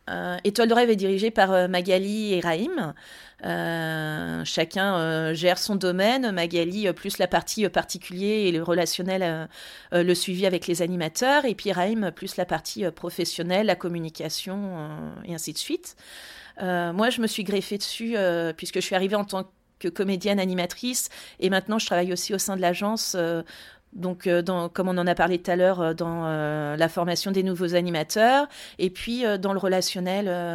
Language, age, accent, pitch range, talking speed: French, 30-49, French, 175-210 Hz, 190 wpm